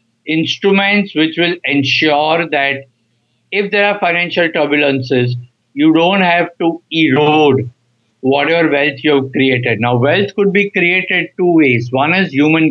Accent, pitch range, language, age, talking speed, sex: Indian, 125-165 Hz, English, 50-69, 140 wpm, male